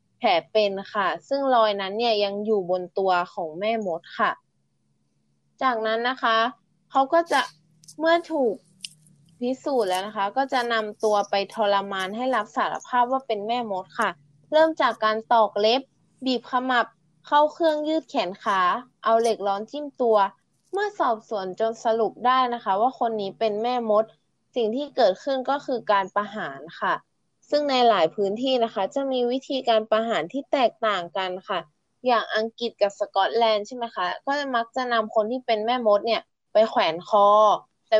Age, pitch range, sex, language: 20-39, 200-260 Hz, female, Thai